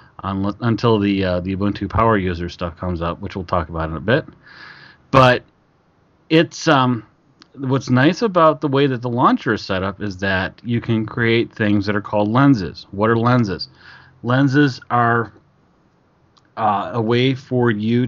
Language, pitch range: English, 95-120 Hz